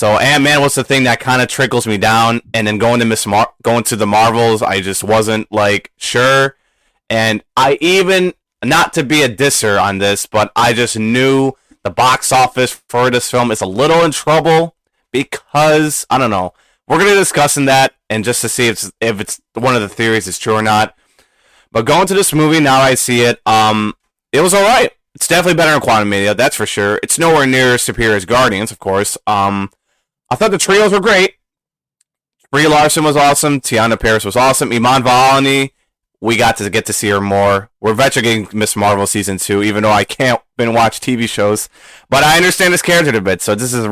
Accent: American